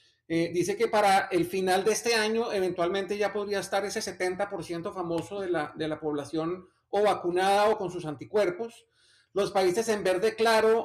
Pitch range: 170-215 Hz